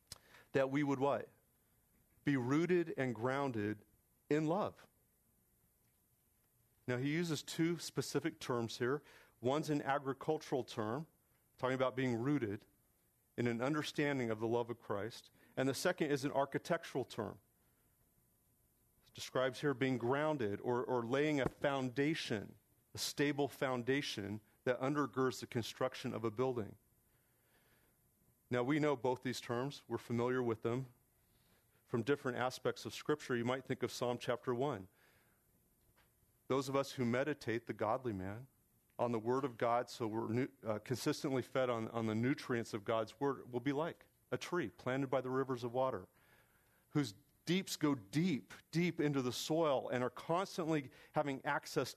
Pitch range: 120-145 Hz